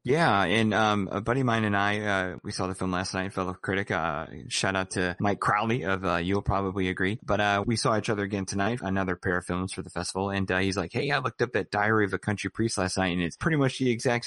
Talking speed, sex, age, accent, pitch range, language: 280 wpm, male, 30-49, American, 90-110 Hz, English